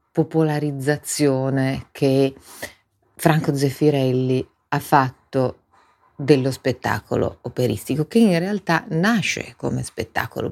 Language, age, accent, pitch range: Italian, 40-59, native, 135-160 Hz